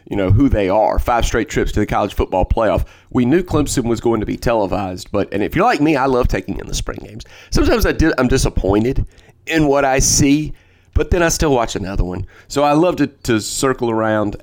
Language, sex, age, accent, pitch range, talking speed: English, male, 30-49, American, 100-135 Hz, 235 wpm